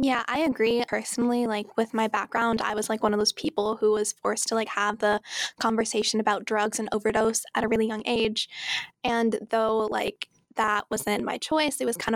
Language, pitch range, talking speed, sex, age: English, 220-235 Hz, 205 wpm, female, 10-29